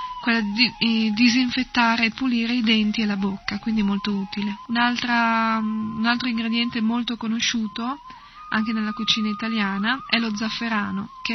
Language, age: Italian, 20-39